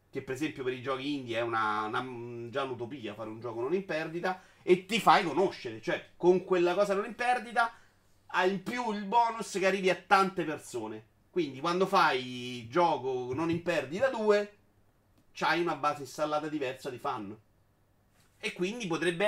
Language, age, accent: Italian, 40-59, native